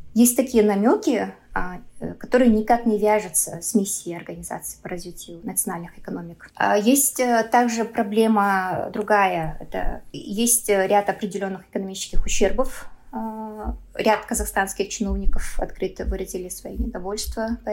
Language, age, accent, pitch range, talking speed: Russian, 20-39, native, 190-230 Hz, 110 wpm